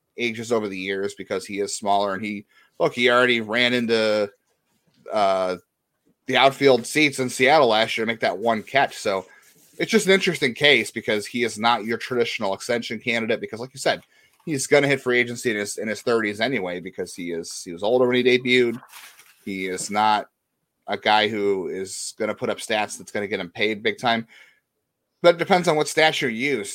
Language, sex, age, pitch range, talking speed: English, male, 30-49, 105-135 Hz, 215 wpm